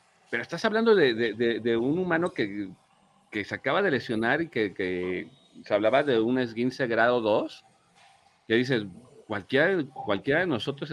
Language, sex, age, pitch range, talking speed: Spanish, male, 40-59, 105-145 Hz, 170 wpm